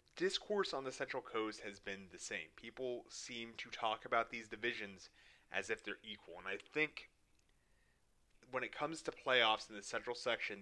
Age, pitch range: 30-49, 105-135 Hz